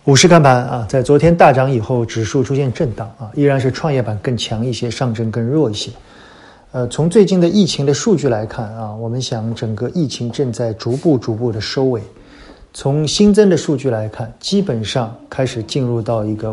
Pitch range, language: 110-140 Hz, Chinese